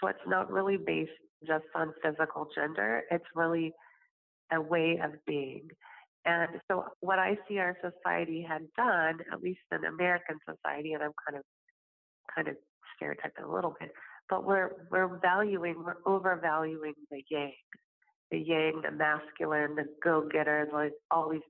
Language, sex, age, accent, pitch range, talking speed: English, female, 30-49, American, 150-180 Hz, 155 wpm